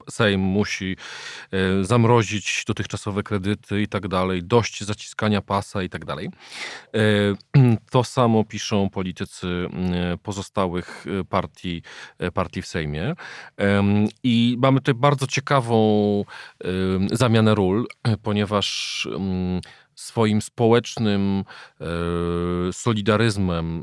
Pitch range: 95-125 Hz